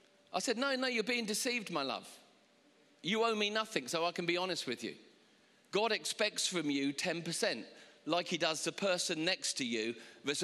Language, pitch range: English, 155-190 Hz